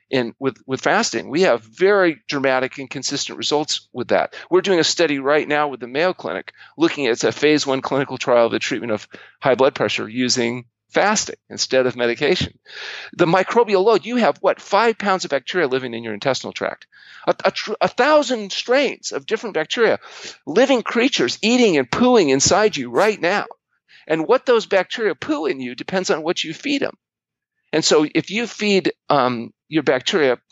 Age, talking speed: 40-59, 190 wpm